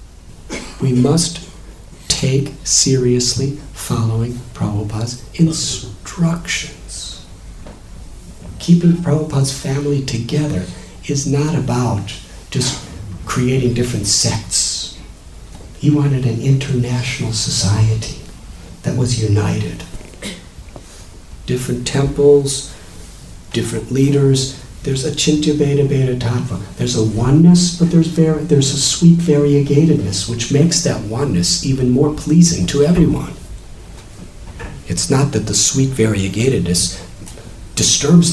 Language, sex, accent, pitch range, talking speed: English, male, American, 95-150 Hz, 95 wpm